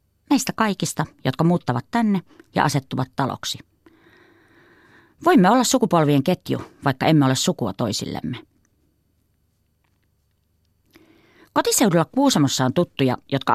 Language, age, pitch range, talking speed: Finnish, 30-49, 125-180 Hz, 95 wpm